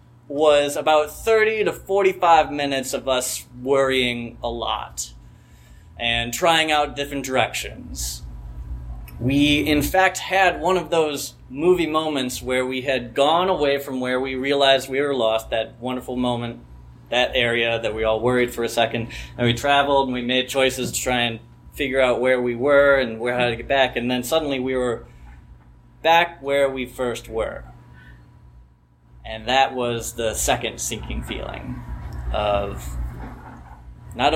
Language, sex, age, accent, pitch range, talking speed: English, male, 20-39, American, 110-140 Hz, 155 wpm